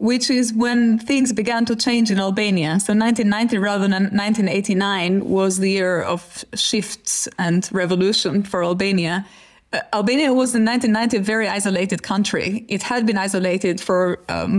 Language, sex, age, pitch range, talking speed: English, female, 20-39, 190-225 Hz, 150 wpm